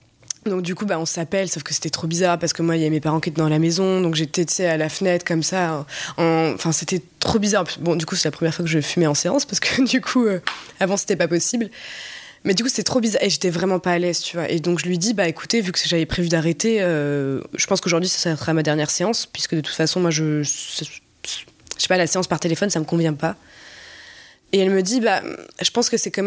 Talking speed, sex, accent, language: 270 wpm, female, French, French